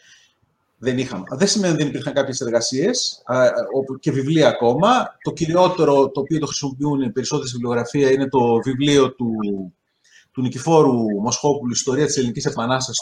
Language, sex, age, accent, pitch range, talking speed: Greek, male, 30-49, native, 135-205 Hz, 150 wpm